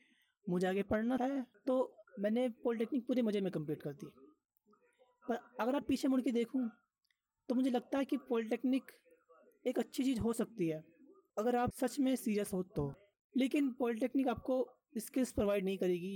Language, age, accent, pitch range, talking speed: Hindi, 20-39, native, 195-260 Hz, 170 wpm